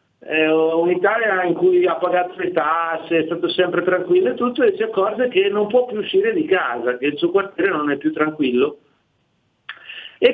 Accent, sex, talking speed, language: native, male, 185 wpm, Italian